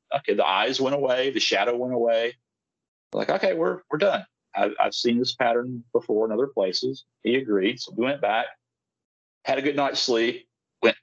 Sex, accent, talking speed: male, American, 190 wpm